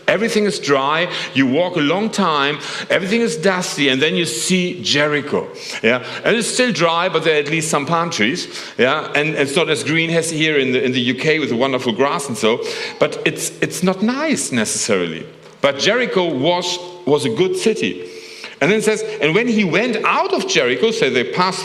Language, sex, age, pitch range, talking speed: English, male, 60-79, 165-235 Hz, 210 wpm